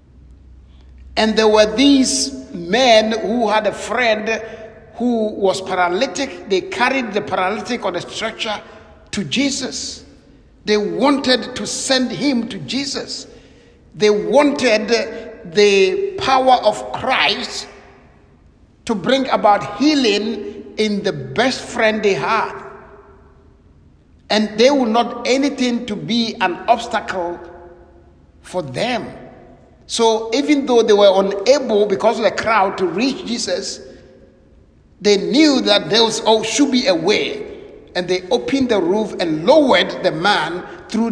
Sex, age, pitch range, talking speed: male, 60-79, 185-250 Hz, 125 wpm